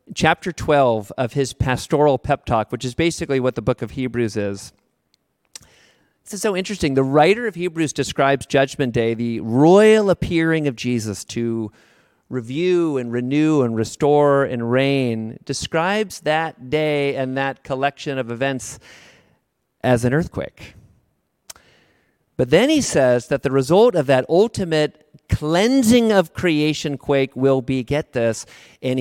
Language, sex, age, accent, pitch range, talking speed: English, male, 40-59, American, 120-155 Hz, 145 wpm